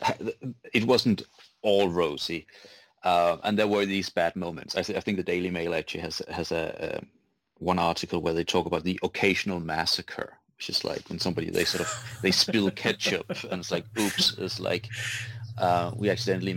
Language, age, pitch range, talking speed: English, 30-49, 90-105 Hz, 190 wpm